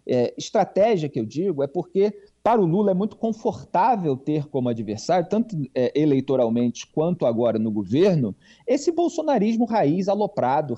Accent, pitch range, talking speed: Brazilian, 130-200 Hz, 140 wpm